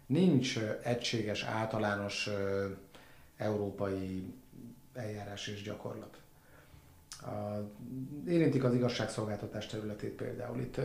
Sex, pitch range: male, 105-125 Hz